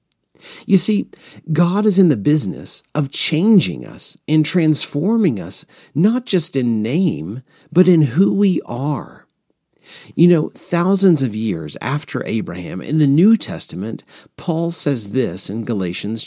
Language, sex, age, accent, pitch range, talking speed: English, male, 40-59, American, 140-190 Hz, 140 wpm